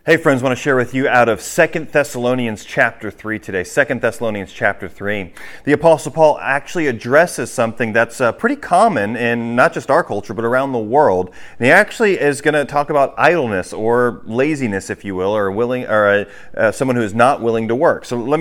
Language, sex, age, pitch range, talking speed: English, male, 40-59, 115-150 Hz, 215 wpm